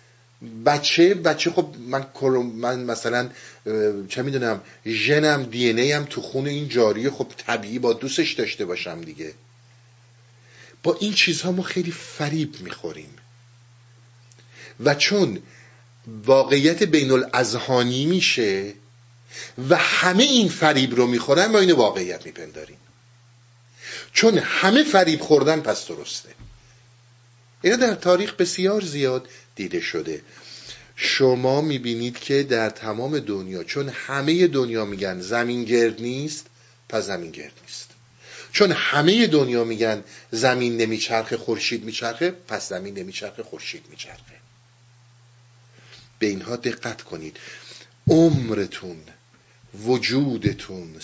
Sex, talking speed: male, 110 wpm